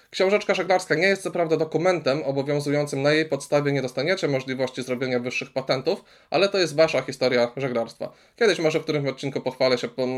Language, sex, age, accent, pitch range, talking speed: Polish, male, 20-39, native, 130-155 Hz, 185 wpm